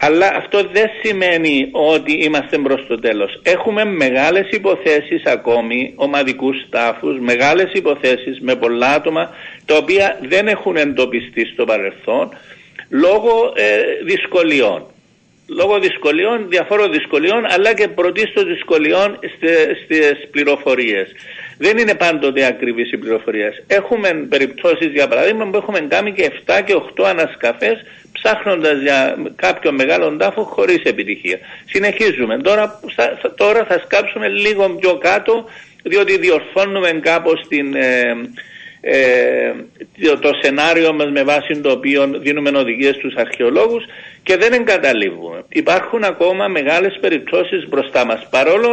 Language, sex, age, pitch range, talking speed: Greek, male, 60-79, 140-230 Hz, 120 wpm